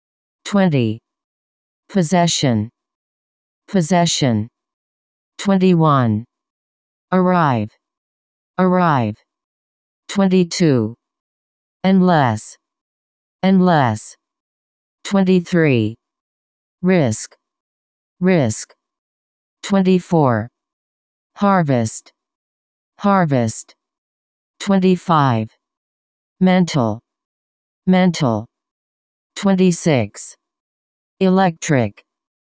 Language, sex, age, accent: Chinese, female, 40-59, American